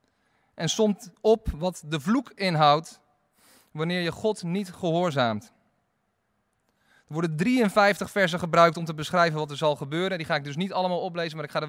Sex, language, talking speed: male, Dutch, 180 wpm